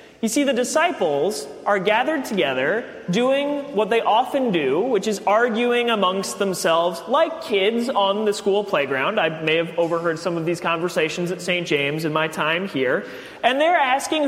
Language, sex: English, male